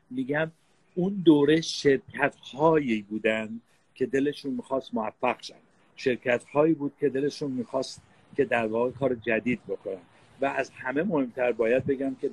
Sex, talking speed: male, 140 wpm